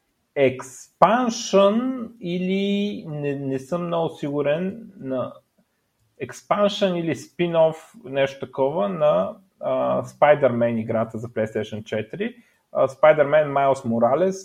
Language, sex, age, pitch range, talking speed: Bulgarian, male, 30-49, 115-165 Hz, 100 wpm